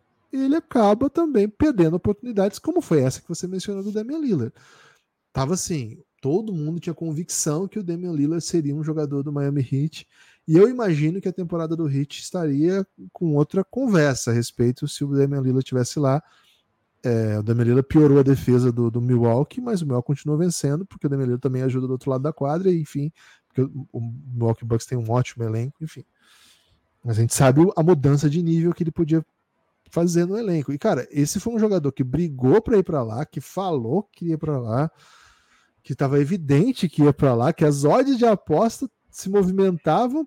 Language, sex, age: Portuguese, male, 10-29